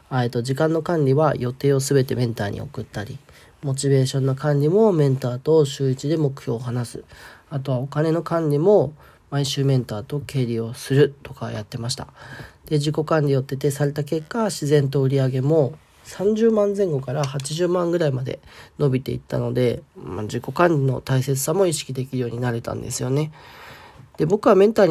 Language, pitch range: Japanese, 130-155 Hz